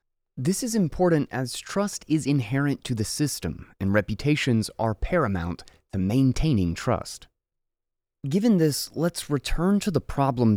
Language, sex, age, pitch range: English, male, 30-49, 105-145 Hz